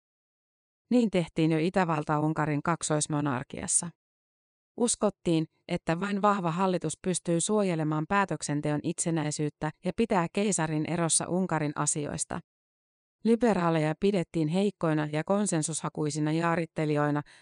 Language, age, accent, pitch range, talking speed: Finnish, 30-49, native, 150-185 Hz, 90 wpm